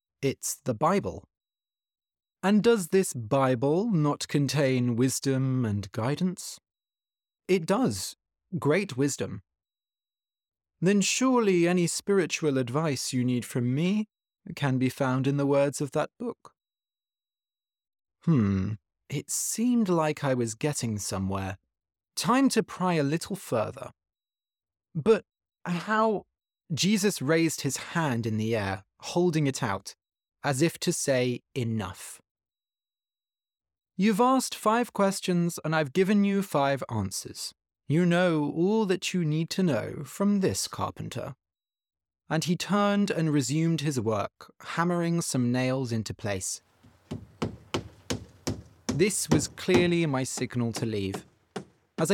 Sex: male